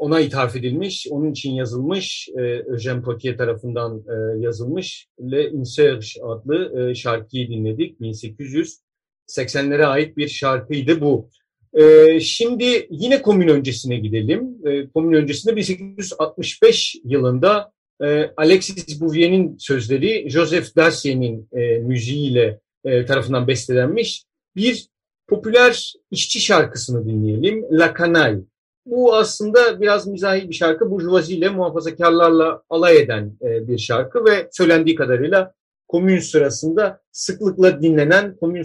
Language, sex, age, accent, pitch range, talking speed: Turkish, male, 50-69, native, 135-190 Hz, 105 wpm